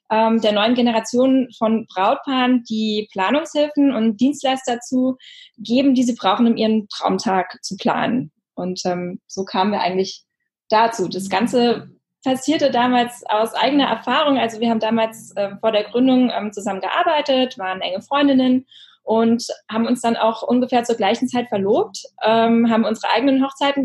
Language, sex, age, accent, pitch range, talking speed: German, female, 10-29, German, 220-255 Hz, 155 wpm